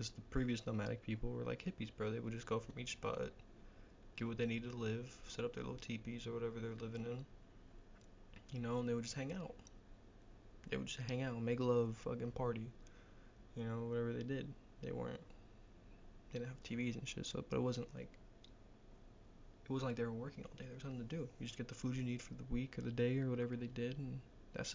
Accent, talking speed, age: American, 240 wpm, 20-39